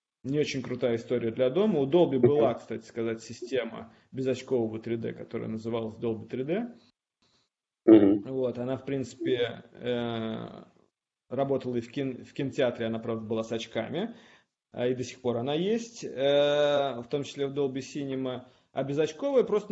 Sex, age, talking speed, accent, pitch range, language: male, 20-39, 140 wpm, native, 120-145 Hz, Russian